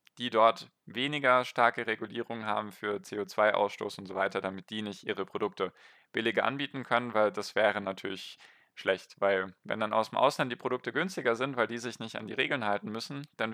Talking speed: 195 wpm